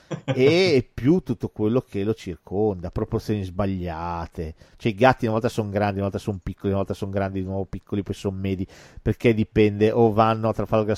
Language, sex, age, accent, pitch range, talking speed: Italian, male, 40-59, native, 90-110 Hz, 195 wpm